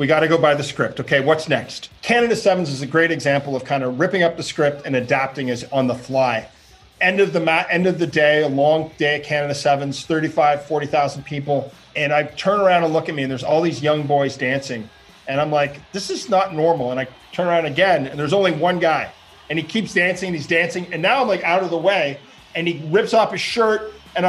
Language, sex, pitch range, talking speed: English, male, 145-185 Hz, 245 wpm